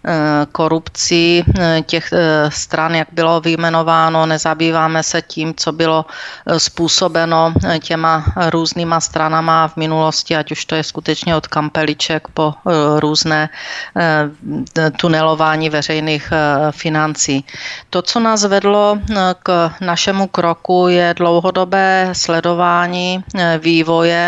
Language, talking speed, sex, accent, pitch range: Czech, 100 wpm, female, native, 160-175 Hz